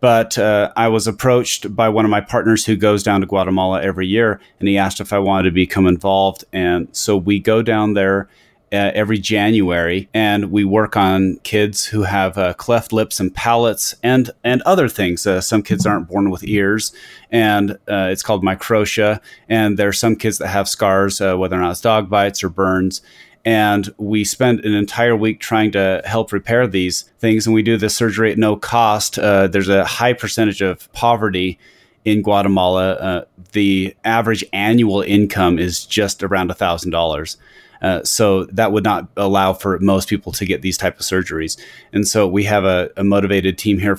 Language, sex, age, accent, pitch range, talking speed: English, male, 30-49, American, 95-110 Hz, 195 wpm